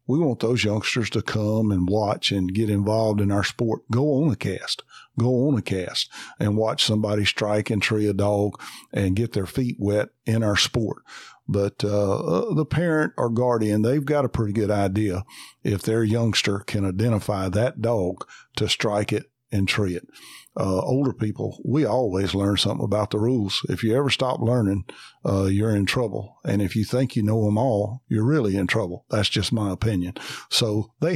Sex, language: male, English